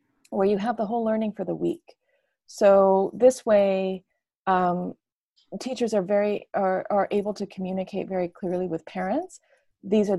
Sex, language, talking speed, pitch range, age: female, English, 160 wpm, 175-210 Hz, 30-49